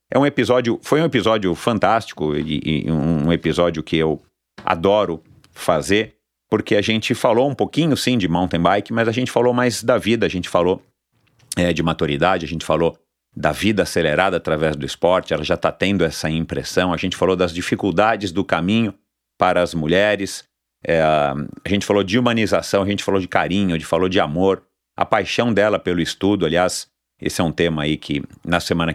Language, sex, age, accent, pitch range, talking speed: Portuguese, male, 40-59, Brazilian, 80-105 Hz, 195 wpm